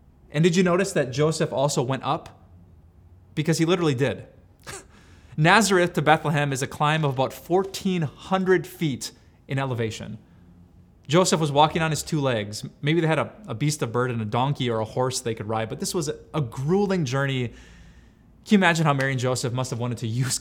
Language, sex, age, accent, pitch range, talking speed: English, male, 20-39, American, 120-155 Hz, 200 wpm